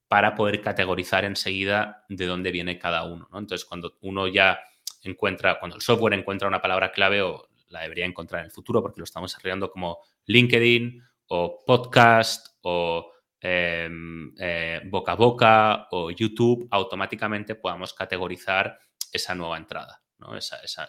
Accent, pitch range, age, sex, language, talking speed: Spanish, 90-115 Hz, 30-49, male, Spanish, 155 wpm